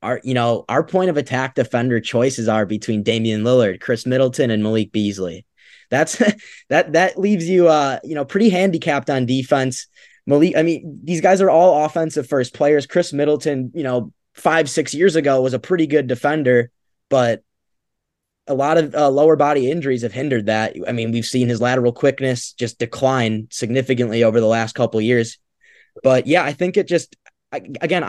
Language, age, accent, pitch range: English, 20-39, American, 115-150 Hz